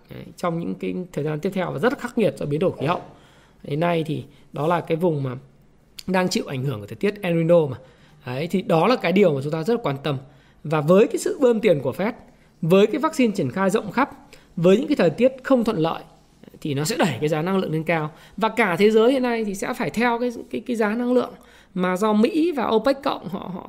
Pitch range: 180-245 Hz